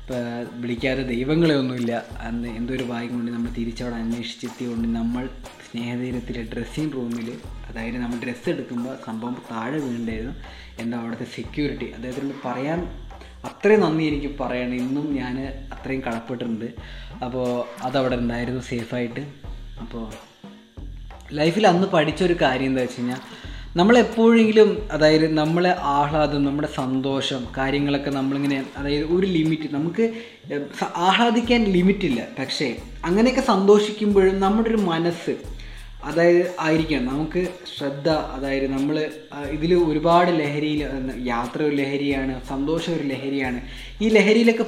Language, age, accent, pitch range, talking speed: Malayalam, 20-39, native, 125-160 Hz, 105 wpm